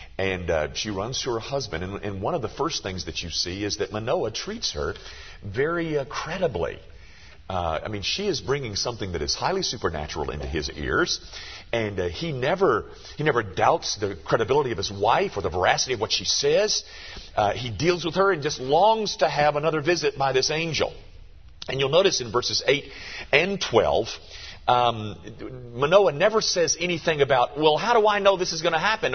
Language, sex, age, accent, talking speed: English, male, 40-59, American, 200 wpm